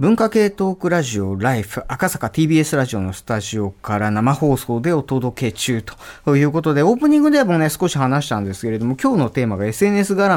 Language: Japanese